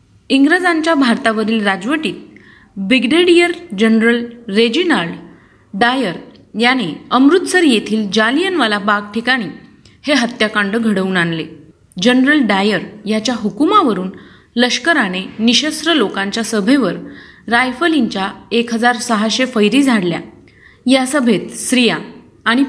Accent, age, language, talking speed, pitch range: native, 30-49, Marathi, 85 wpm, 210-280 Hz